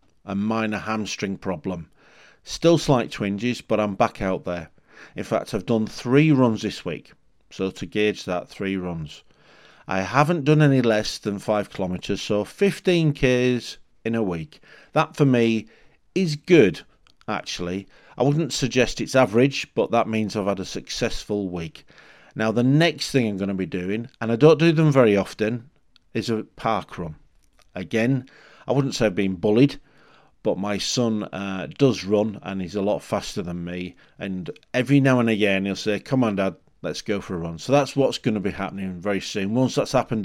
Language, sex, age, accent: English, male, 40-59, British